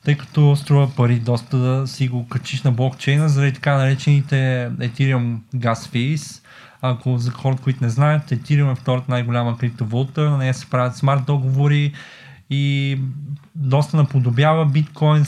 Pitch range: 130-150 Hz